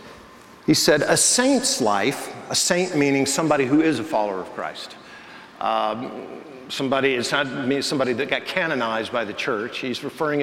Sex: male